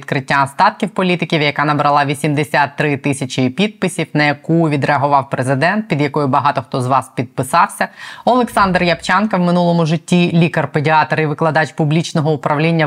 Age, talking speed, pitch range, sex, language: 20-39, 135 wpm, 140-170 Hz, female, Ukrainian